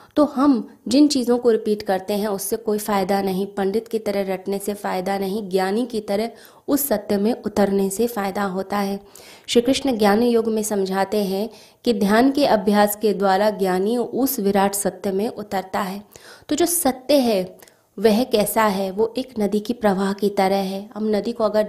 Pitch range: 200-230 Hz